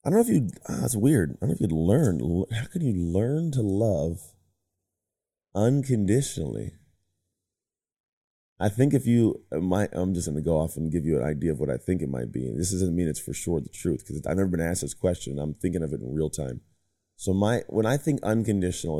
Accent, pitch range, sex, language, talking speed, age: American, 85-105 Hz, male, English, 225 wpm, 30-49